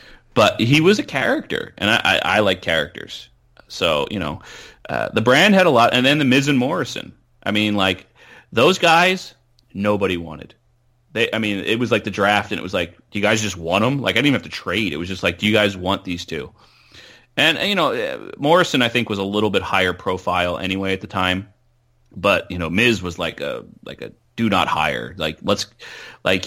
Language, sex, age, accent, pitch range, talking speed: English, male, 30-49, American, 90-120 Hz, 225 wpm